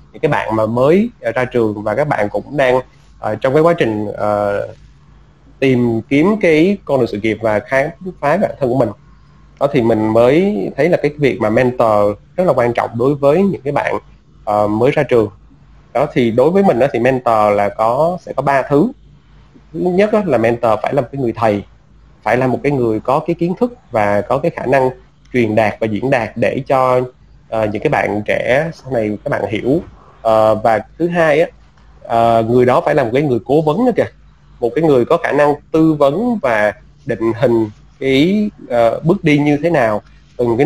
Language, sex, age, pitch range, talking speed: Vietnamese, male, 20-39, 110-145 Hz, 215 wpm